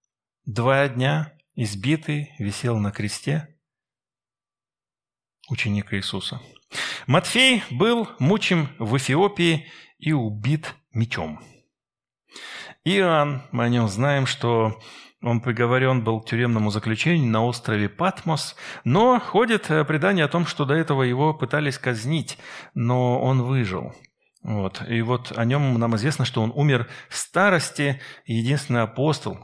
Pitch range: 115-150 Hz